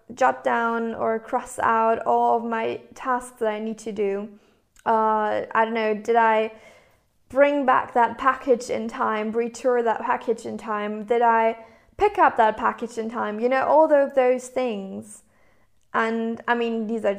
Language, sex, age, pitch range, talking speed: English, female, 20-39, 210-235 Hz, 175 wpm